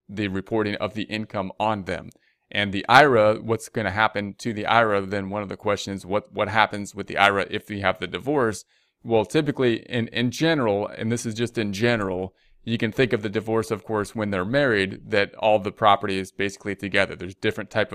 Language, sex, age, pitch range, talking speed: English, male, 30-49, 100-115 Hz, 215 wpm